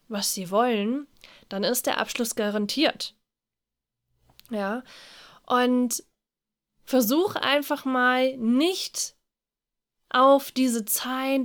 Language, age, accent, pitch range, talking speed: German, 20-39, German, 220-265 Hz, 90 wpm